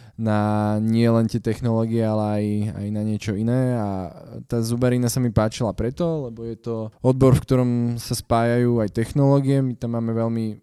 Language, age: Slovak, 20-39